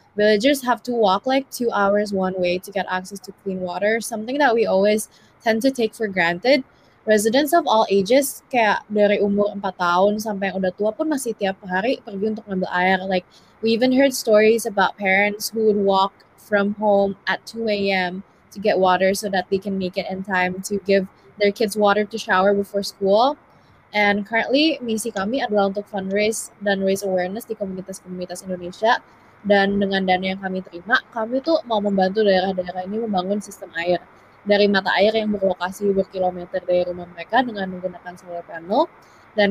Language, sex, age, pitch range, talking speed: Indonesian, female, 20-39, 190-225 Hz, 185 wpm